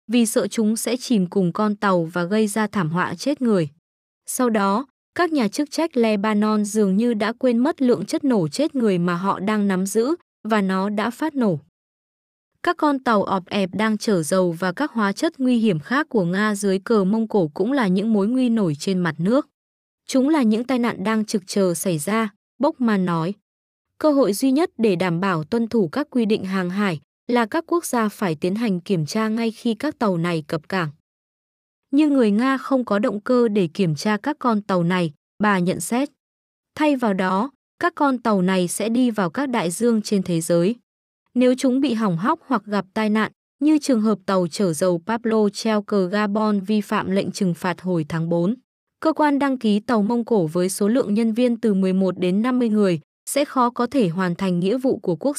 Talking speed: 220 wpm